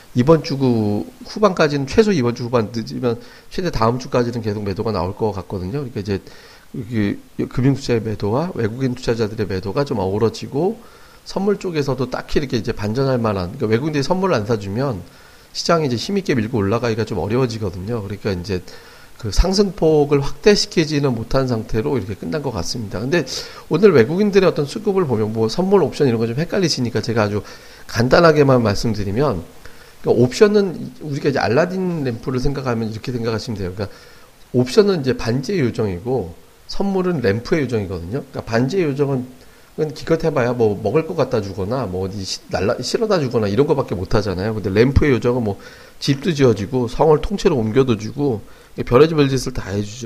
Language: Korean